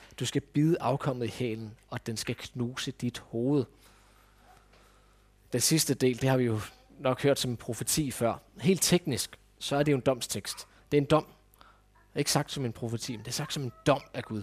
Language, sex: Danish, male